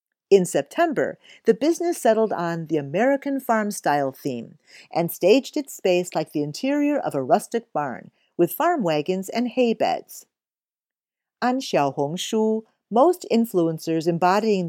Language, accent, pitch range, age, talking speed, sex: English, American, 170-265 Hz, 50-69, 140 wpm, female